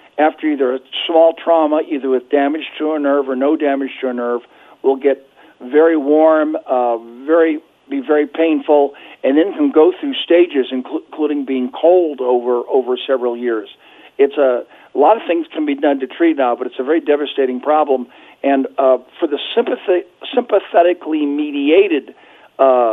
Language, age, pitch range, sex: English, 50-69, 135-175 Hz, male